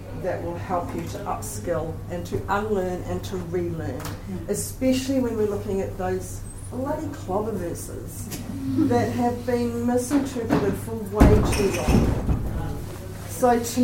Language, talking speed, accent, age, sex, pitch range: English, 135 wpm, Australian, 40-59, female, 95-120 Hz